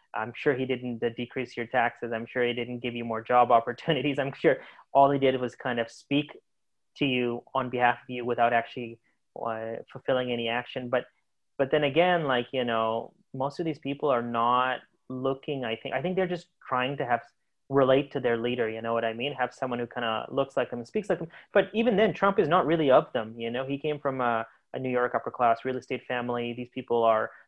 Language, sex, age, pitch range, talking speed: English, male, 20-39, 120-140 Hz, 235 wpm